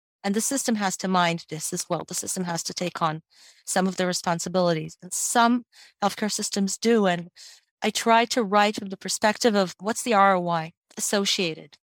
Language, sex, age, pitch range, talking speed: English, female, 40-59, 180-210 Hz, 185 wpm